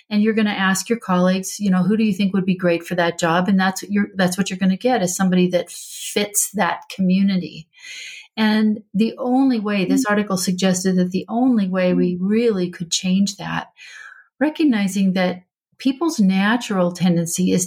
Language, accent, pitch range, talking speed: English, American, 180-215 Hz, 190 wpm